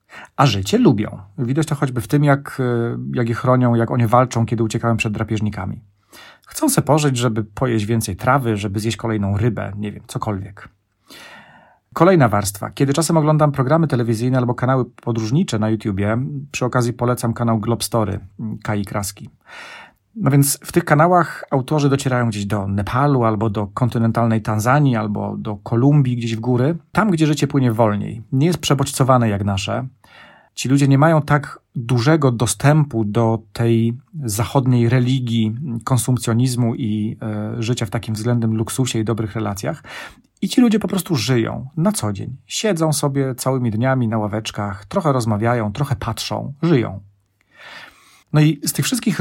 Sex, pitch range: male, 110-140 Hz